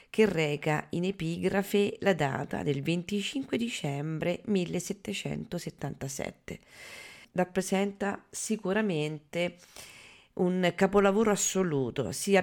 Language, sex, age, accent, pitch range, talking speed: Italian, female, 40-59, native, 155-195 Hz, 75 wpm